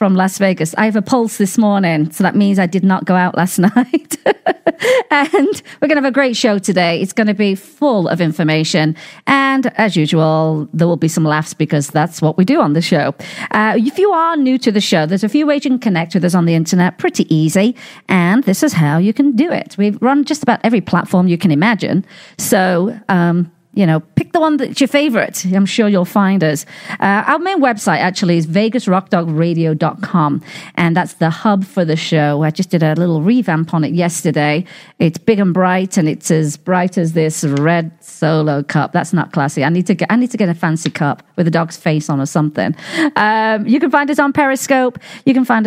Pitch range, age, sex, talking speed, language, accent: 165-220 Hz, 40-59, female, 225 wpm, English, British